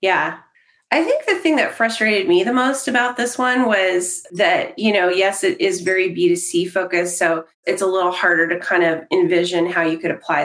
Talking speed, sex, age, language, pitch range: 205 wpm, female, 30-49, English, 180-250 Hz